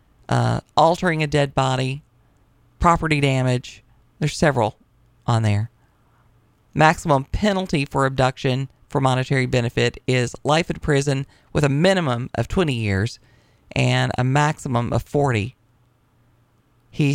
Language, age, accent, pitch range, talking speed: English, 40-59, American, 120-155 Hz, 120 wpm